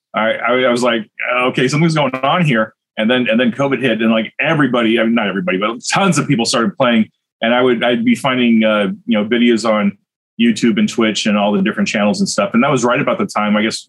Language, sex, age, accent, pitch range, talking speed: English, male, 30-49, American, 105-120 Hz, 255 wpm